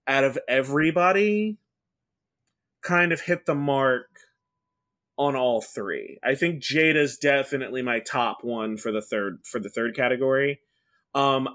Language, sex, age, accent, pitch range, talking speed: English, male, 20-39, American, 130-175 Hz, 135 wpm